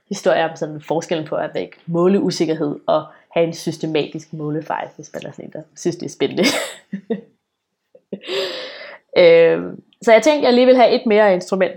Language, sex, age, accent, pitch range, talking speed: Danish, female, 20-39, native, 165-210 Hz, 175 wpm